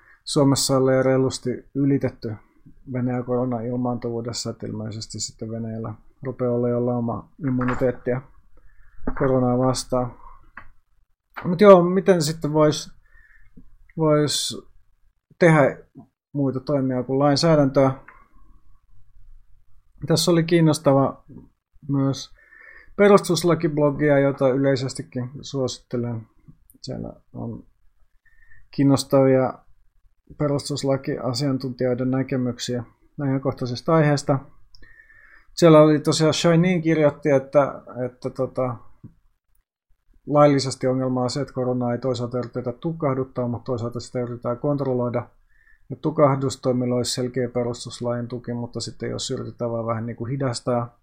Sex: male